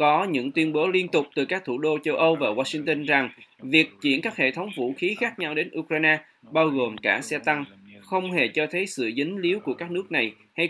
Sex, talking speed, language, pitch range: male, 240 wpm, Vietnamese, 135-170 Hz